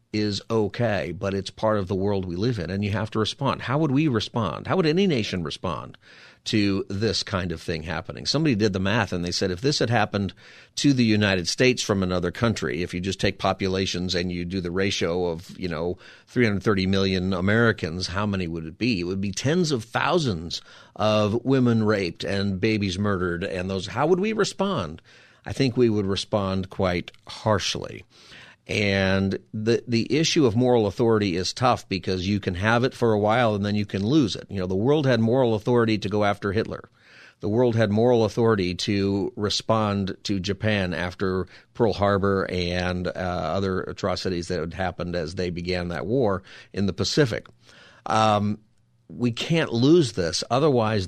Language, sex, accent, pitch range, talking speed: English, male, American, 95-115 Hz, 190 wpm